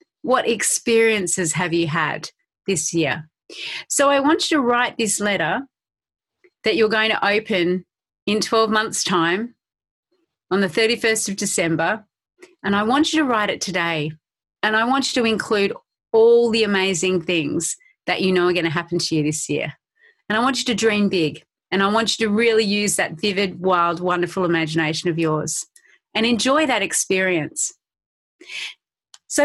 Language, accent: English, Australian